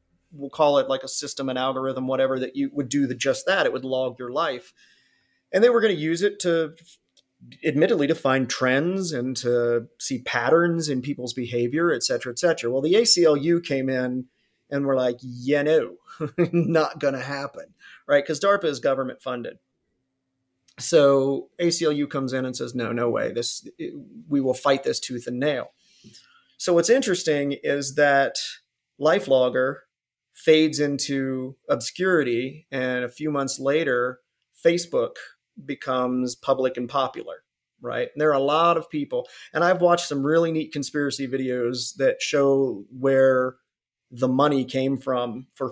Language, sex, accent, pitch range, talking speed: English, male, American, 130-155 Hz, 165 wpm